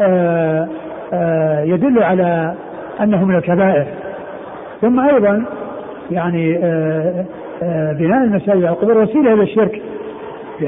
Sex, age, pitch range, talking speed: male, 60-79, 175-210 Hz, 110 wpm